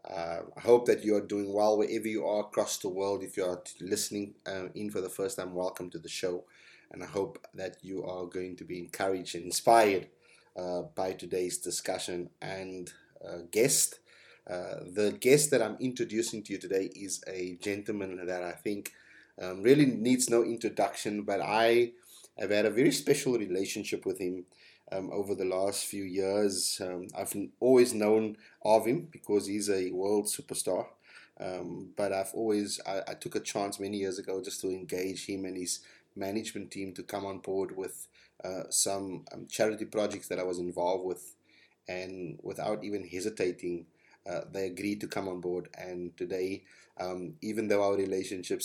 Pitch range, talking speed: 90-105 Hz, 180 wpm